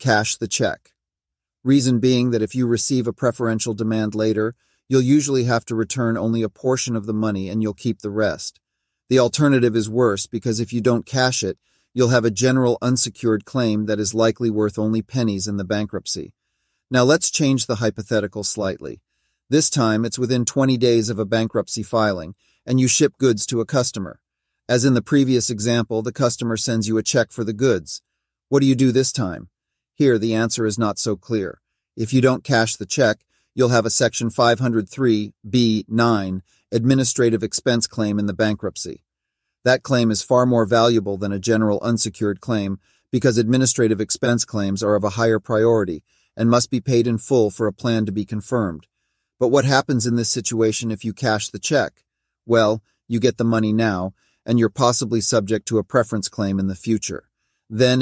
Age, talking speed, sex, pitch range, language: 40-59, 190 wpm, male, 110-125 Hz, English